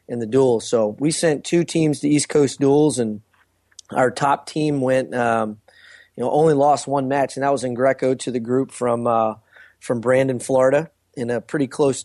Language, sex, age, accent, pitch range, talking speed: English, male, 20-39, American, 120-140 Hz, 205 wpm